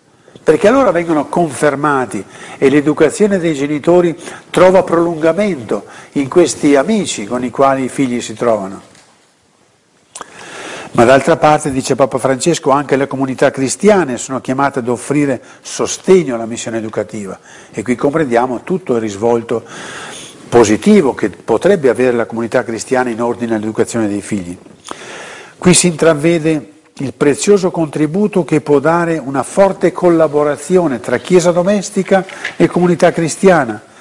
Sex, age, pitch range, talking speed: male, 50-69, 120-170 Hz, 130 wpm